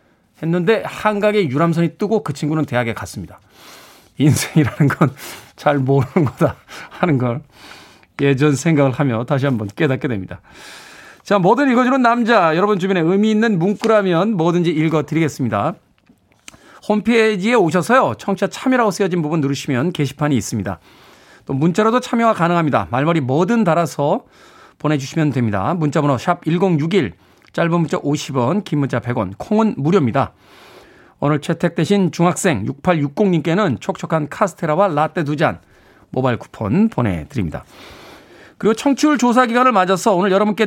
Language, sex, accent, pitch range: Korean, male, native, 145-210 Hz